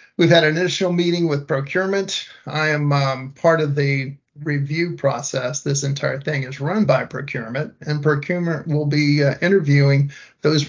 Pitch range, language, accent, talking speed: 135-155 Hz, English, American, 165 wpm